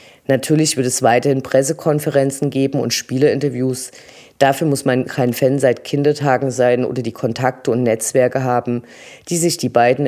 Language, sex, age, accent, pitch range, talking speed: German, female, 20-39, German, 125-150 Hz, 155 wpm